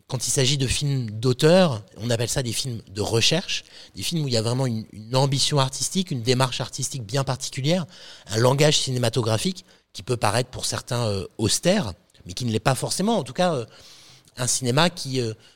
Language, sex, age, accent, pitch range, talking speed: French, male, 30-49, French, 110-145 Hz, 195 wpm